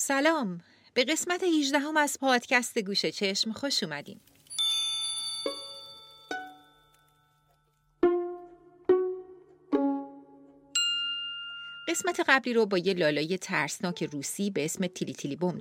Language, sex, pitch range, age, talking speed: Persian, female, 170-230 Hz, 40-59, 90 wpm